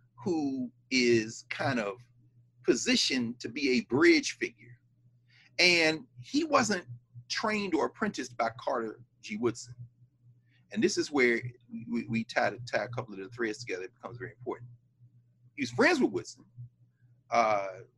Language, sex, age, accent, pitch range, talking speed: English, male, 40-59, American, 120-145 Hz, 145 wpm